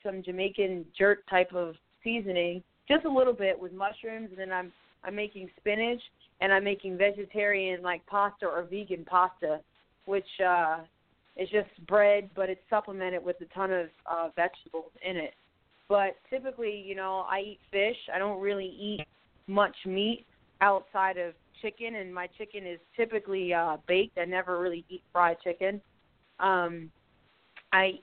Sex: female